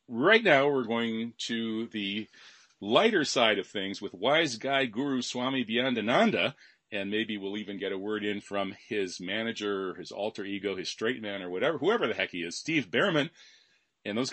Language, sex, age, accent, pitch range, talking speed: English, male, 40-59, American, 105-145 Hz, 185 wpm